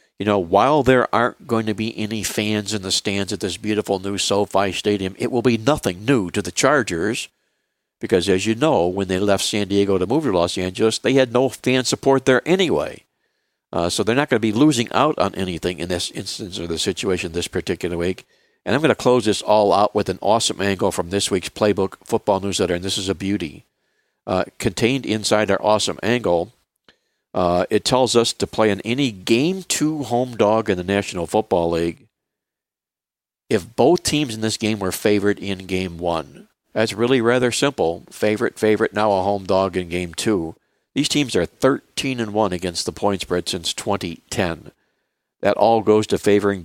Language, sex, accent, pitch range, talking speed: English, male, American, 95-115 Hz, 195 wpm